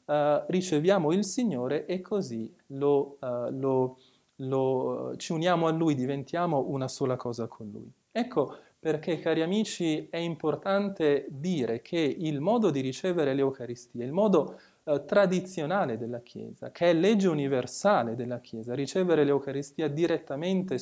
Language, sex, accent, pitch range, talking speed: English, male, Italian, 130-180 Hz, 140 wpm